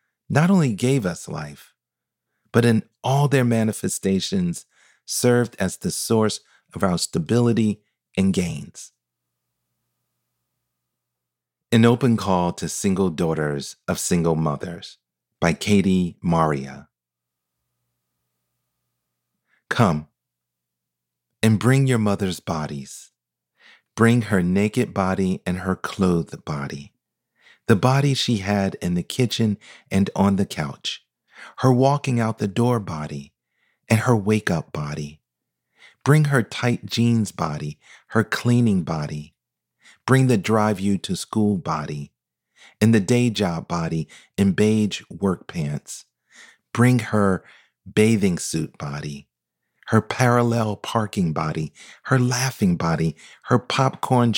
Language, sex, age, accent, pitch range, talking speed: English, male, 40-59, American, 70-115 Hz, 110 wpm